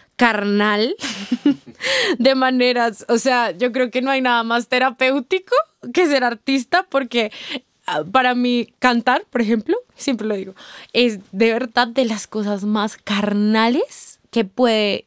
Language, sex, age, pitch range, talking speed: Spanish, female, 20-39, 205-255 Hz, 140 wpm